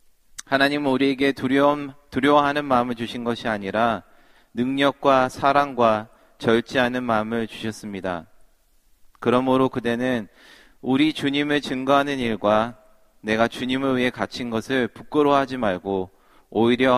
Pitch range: 110-130 Hz